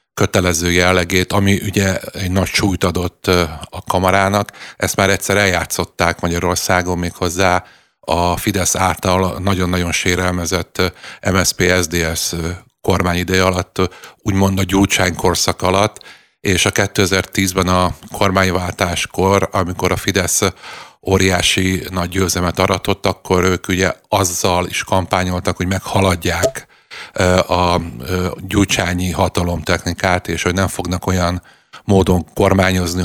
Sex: male